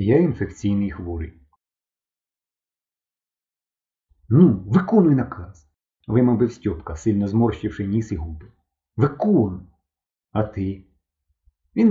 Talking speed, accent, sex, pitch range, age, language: 90 wpm, native, male, 80-125 Hz, 40-59, Ukrainian